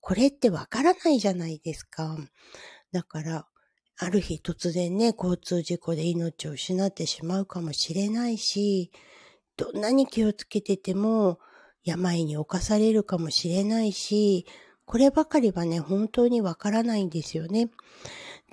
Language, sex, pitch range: Japanese, female, 175-220 Hz